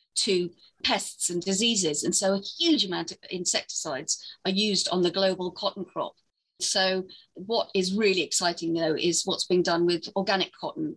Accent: British